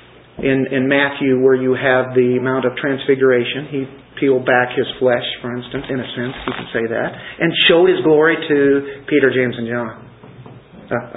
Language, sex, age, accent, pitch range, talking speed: English, male, 50-69, American, 125-165 Hz, 185 wpm